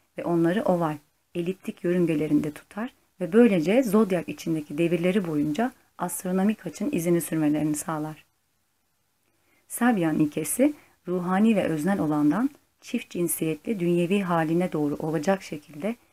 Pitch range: 155-205 Hz